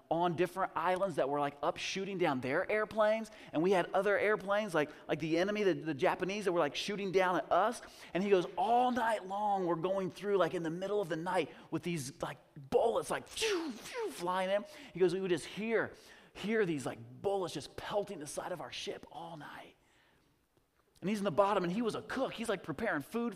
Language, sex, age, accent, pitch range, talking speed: English, male, 30-49, American, 175-225 Hz, 220 wpm